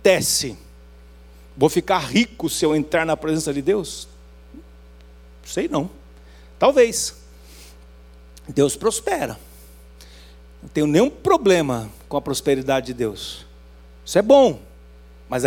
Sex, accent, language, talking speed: male, Brazilian, Portuguese, 110 wpm